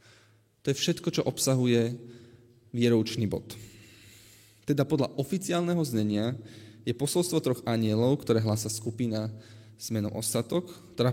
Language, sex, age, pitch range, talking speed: Slovak, male, 20-39, 110-135 Hz, 120 wpm